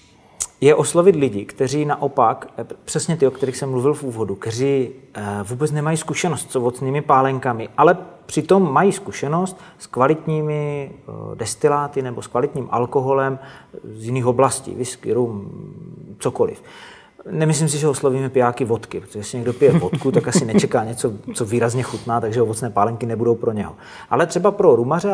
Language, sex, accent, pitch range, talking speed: Czech, male, native, 120-155 Hz, 155 wpm